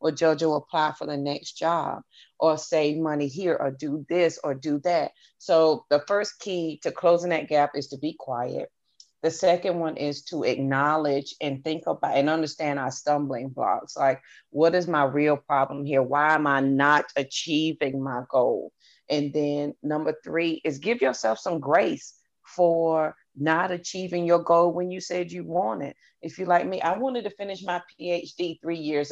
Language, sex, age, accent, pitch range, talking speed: English, female, 30-49, American, 145-170 Hz, 185 wpm